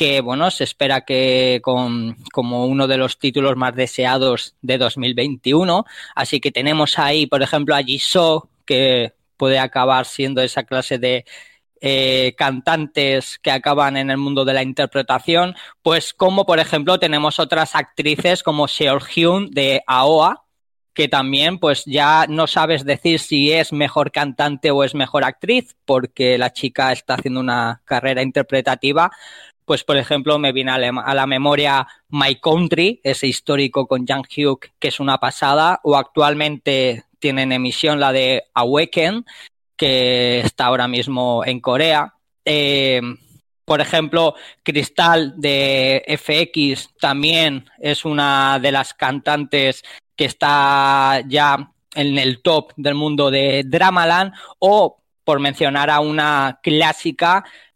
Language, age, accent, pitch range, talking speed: Spanish, 20-39, Spanish, 130-150 Hz, 140 wpm